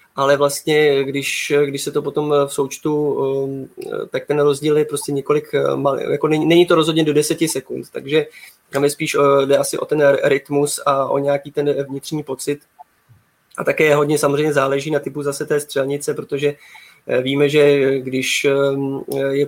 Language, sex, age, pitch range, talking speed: Czech, male, 20-39, 140-150 Hz, 165 wpm